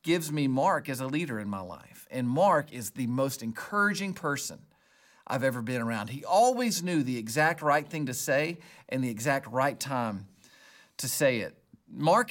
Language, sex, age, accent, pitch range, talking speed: English, male, 40-59, American, 135-185 Hz, 185 wpm